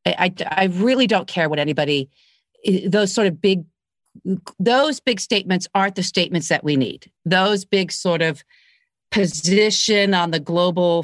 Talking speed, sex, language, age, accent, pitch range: 150 wpm, female, English, 40-59, American, 170-210 Hz